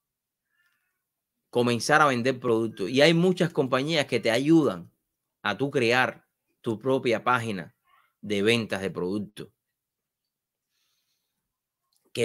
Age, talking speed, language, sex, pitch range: 30-49, 110 wpm, English, male, 130-185 Hz